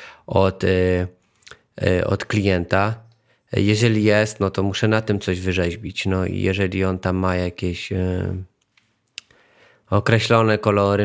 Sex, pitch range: male, 100-115 Hz